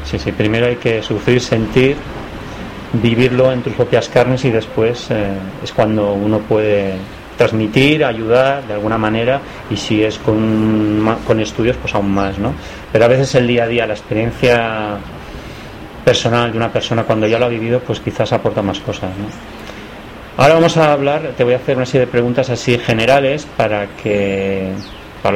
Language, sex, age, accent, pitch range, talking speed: Spanish, male, 30-49, Spanish, 105-125 Hz, 175 wpm